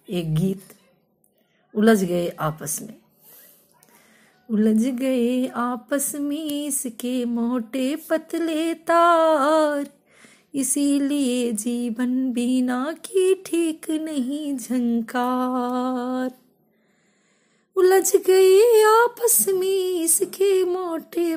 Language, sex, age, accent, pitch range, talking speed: Hindi, female, 20-39, native, 235-320 Hz, 75 wpm